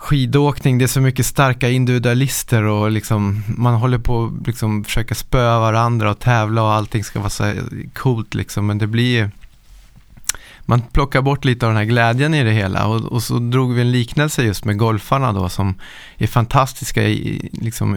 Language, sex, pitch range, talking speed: Swedish, male, 105-125 Hz, 185 wpm